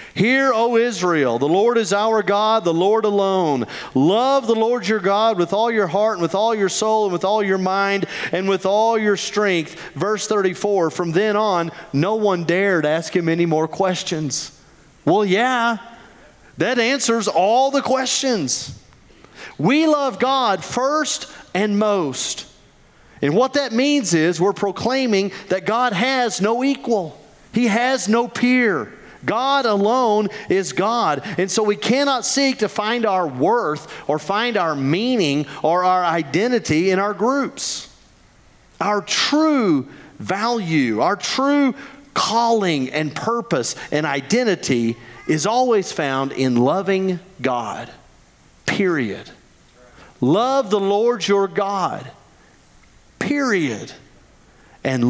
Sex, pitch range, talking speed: male, 175-235 Hz, 135 wpm